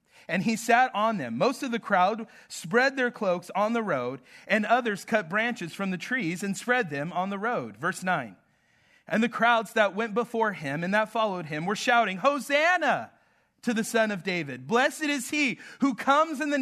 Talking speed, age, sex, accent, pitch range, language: 200 wpm, 40-59, male, American, 180-235 Hz, English